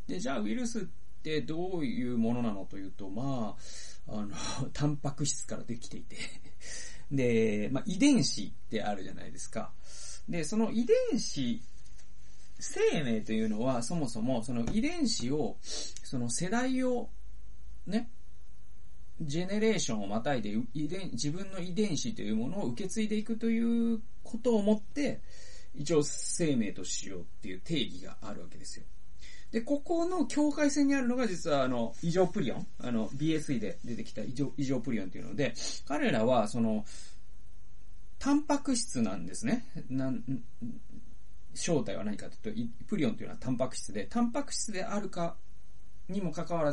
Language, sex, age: Japanese, male, 40-59